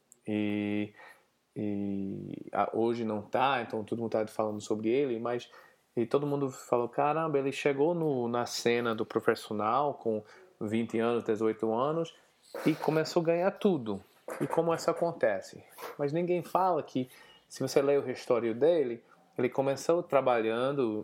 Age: 20-39